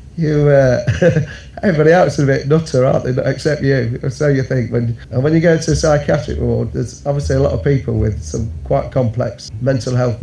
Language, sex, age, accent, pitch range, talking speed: English, male, 40-59, British, 115-145 Hz, 210 wpm